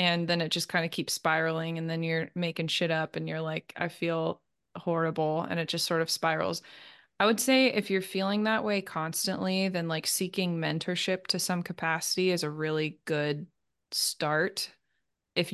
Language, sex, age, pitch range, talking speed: English, female, 20-39, 165-190 Hz, 185 wpm